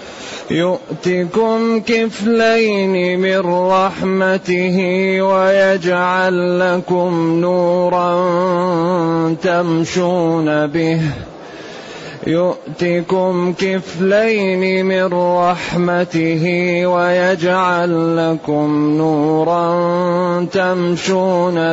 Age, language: 30-49, Arabic